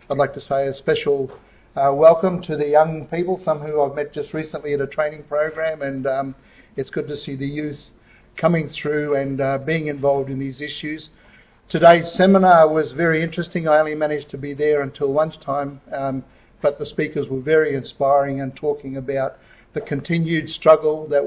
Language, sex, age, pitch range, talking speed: English, male, 50-69, 135-155 Hz, 190 wpm